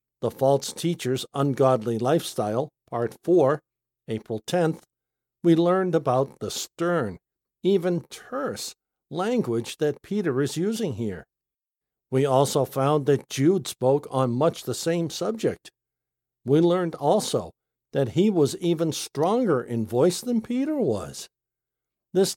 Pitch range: 125-175 Hz